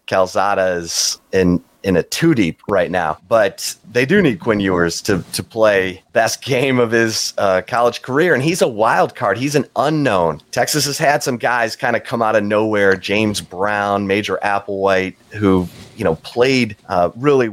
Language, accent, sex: English, American, male